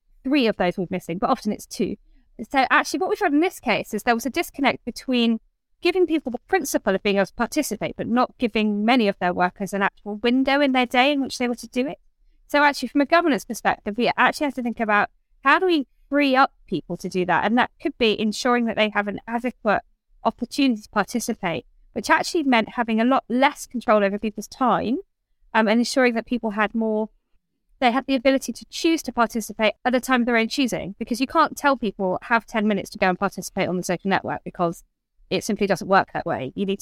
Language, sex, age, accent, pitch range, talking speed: English, female, 20-39, British, 200-255 Hz, 235 wpm